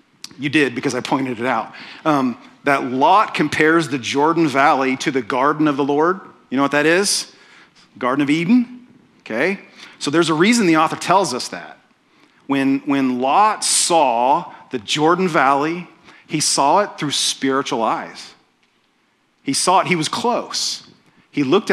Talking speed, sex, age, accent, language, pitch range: 165 wpm, male, 40-59, American, English, 140-185 Hz